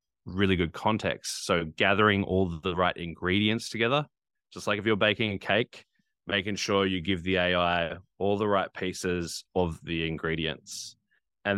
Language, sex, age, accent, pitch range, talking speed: English, male, 20-39, Australian, 90-110 Hz, 160 wpm